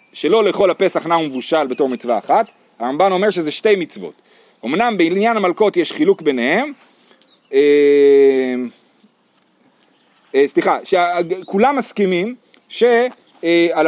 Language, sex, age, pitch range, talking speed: Hebrew, male, 40-59, 150-215 Hz, 110 wpm